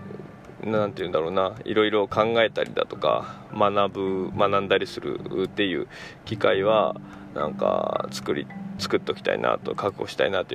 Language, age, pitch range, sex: Japanese, 20-39, 105-155 Hz, male